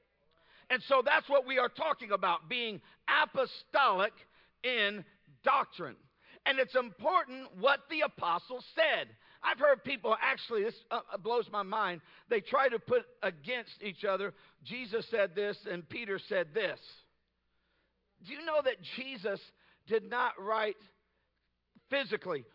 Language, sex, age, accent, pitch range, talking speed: English, male, 50-69, American, 185-250 Hz, 135 wpm